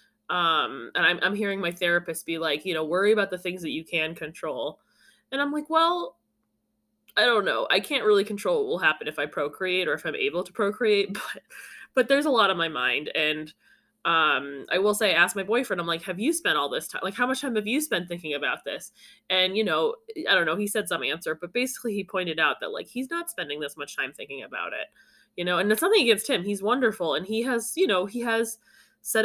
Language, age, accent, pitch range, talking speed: English, 20-39, American, 170-245 Hz, 245 wpm